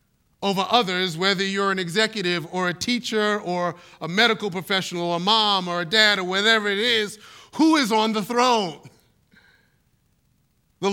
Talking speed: 160 wpm